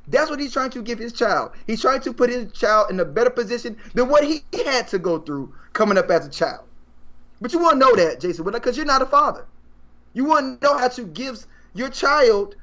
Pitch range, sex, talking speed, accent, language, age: 205-300 Hz, male, 240 wpm, American, English, 20-39